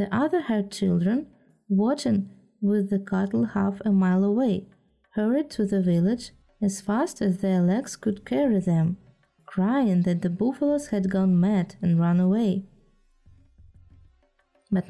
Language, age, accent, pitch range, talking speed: Russian, 20-39, native, 190-230 Hz, 140 wpm